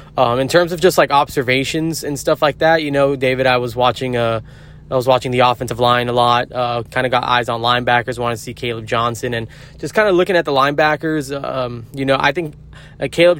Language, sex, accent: English, male, American